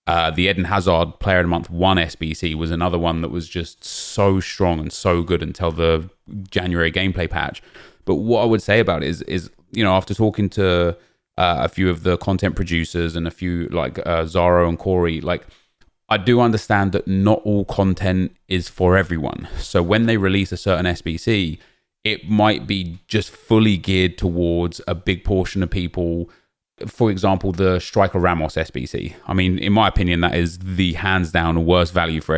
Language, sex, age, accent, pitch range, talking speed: English, male, 20-39, British, 85-100 Hz, 195 wpm